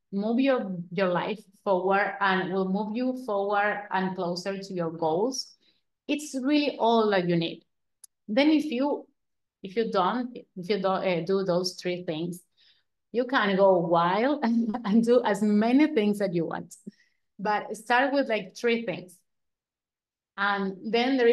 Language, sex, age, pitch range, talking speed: English, female, 30-49, 185-230 Hz, 160 wpm